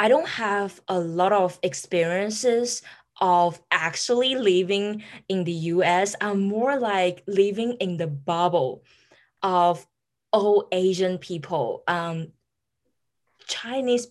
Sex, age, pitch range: female, 20-39, 170-205 Hz